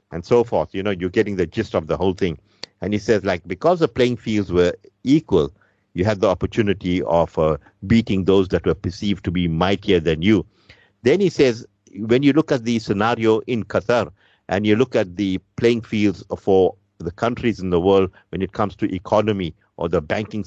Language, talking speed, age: English, 210 wpm, 50-69